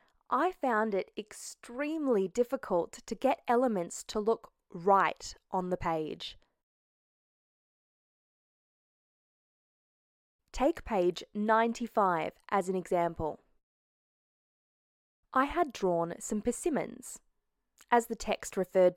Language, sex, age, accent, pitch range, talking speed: English, female, 20-39, Australian, 185-265 Hz, 90 wpm